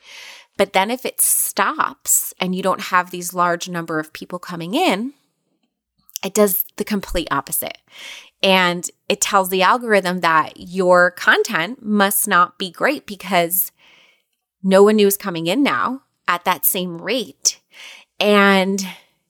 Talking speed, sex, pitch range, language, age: 140 wpm, female, 175-225 Hz, English, 30-49